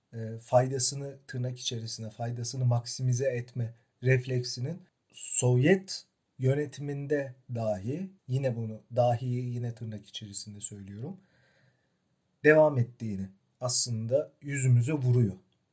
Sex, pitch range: male, 120-150 Hz